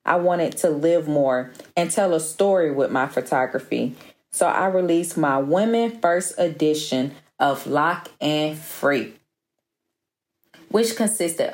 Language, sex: English, female